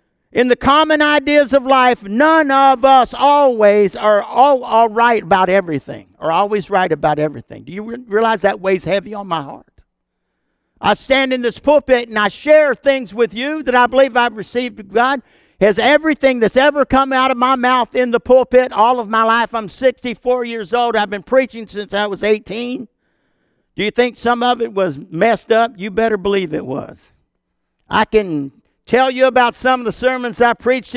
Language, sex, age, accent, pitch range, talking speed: English, male, 50-69, American, 190-245 Hz, 190 wpm